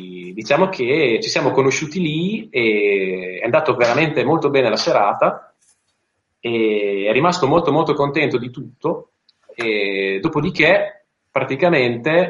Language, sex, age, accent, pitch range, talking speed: Italian, male, 30-49, native, 115-175 Hz, 120 wpm